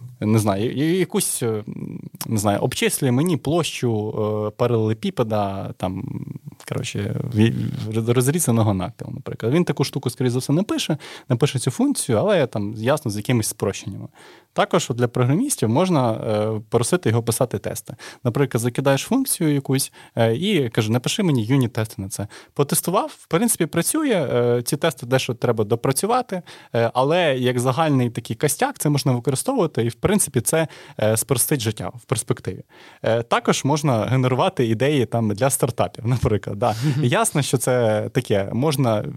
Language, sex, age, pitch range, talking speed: Ukrainian, male, 20-39, 115-150 Hz, 140 wpm